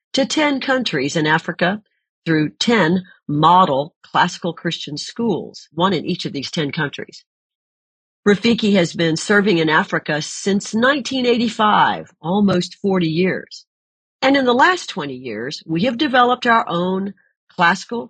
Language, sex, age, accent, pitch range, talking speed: English, female, 50-69, American, 150-205 Hz, 135 wpm